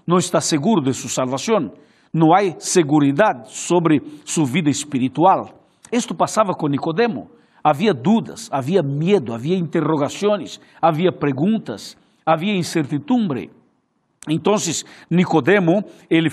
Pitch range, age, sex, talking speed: 155-200 Hz, 60-79, male, 110 wpm